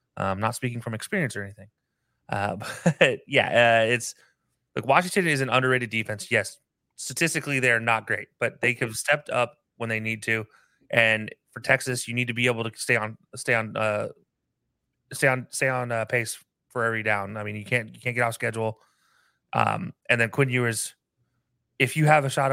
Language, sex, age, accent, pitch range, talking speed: English, male, 30-49, American, 110-125 Hz, 195 wpm